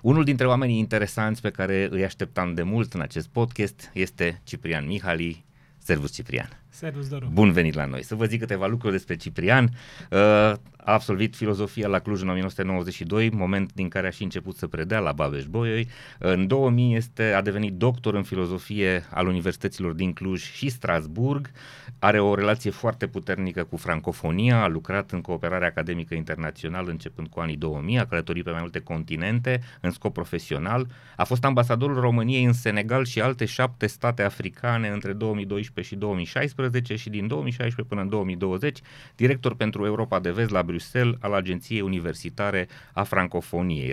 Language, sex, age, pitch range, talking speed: Romanian, male, 30-49, 90-115 Hz, 165 wpm